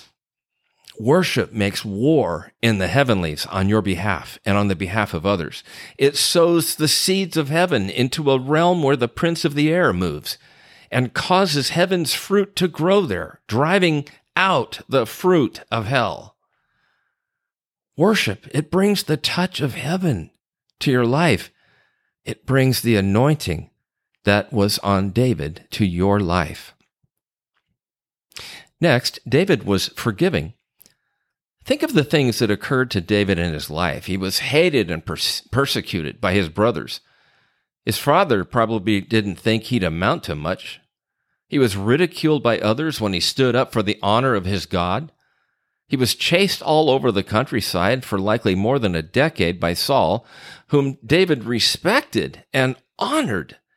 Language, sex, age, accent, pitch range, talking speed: English, male, 50-69, American, 100-155 Hz, 145 wpm